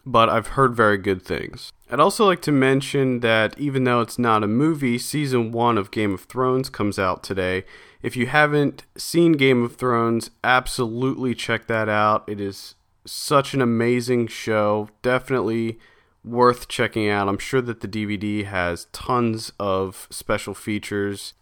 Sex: male